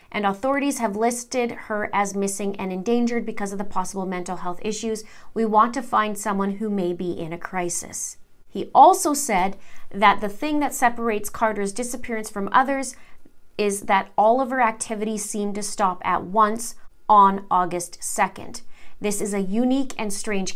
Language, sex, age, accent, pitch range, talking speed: English, female, 30-49, American, 195-230 Hz, 170 wpm